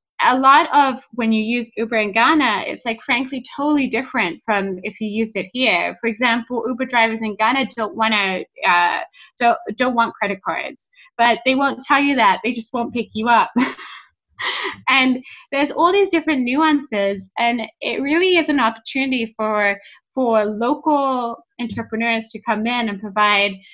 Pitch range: 210-265 Hz